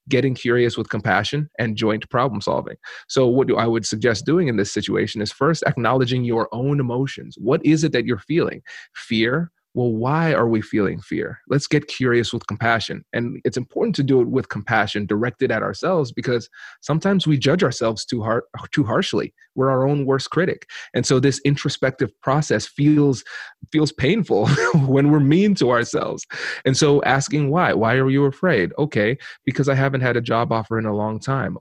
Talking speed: 190 wpm